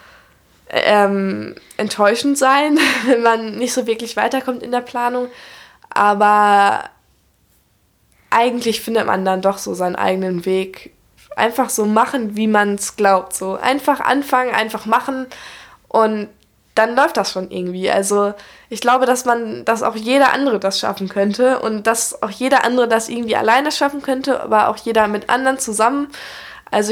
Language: German